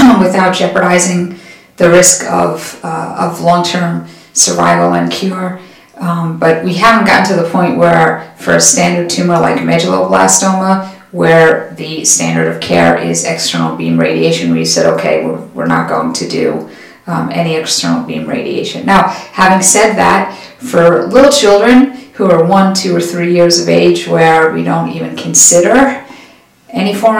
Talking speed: 160 wpm